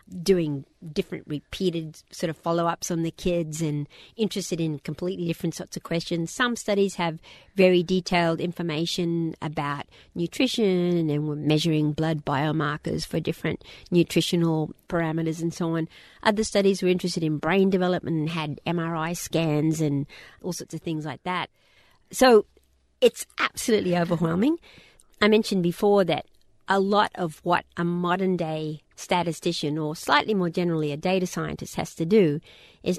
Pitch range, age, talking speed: 155-185 Hz, 50-69, 145 wpm